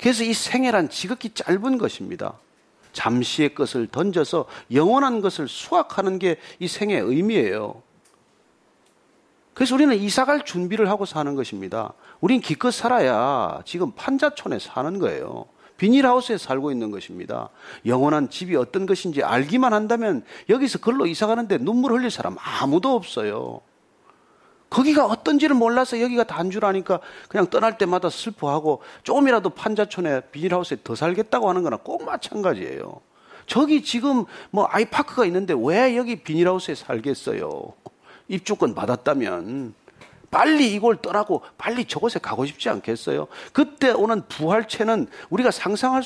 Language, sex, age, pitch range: Korean, male, 40-59, 170-260 Hz